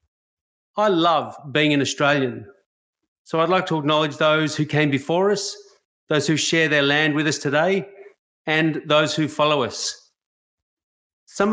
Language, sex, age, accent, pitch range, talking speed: English, male, 30-49, Australian, 135-165 Hz, 150 wpm